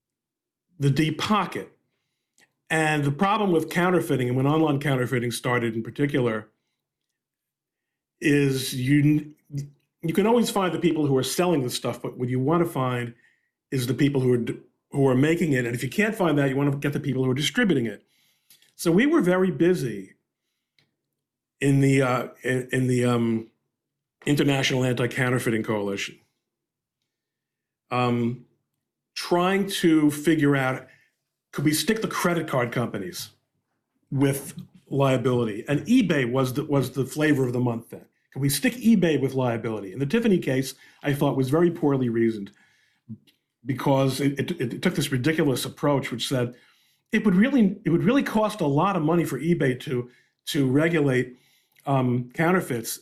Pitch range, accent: 125-165 Hz, American